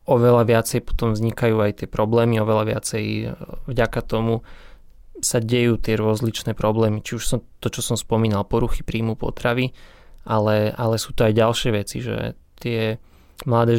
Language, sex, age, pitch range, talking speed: Slovak, male, 20-39, 110-120 Hz, 155 wpm